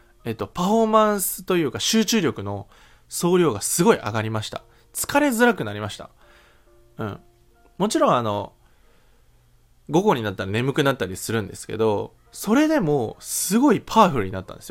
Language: Japanese